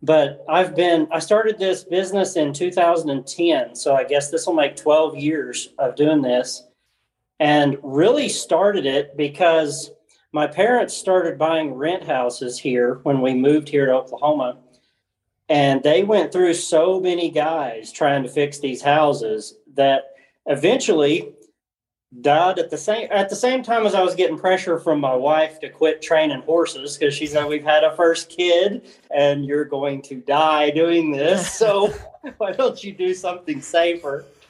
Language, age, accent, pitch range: English, 40-59, American, 145-180 Hz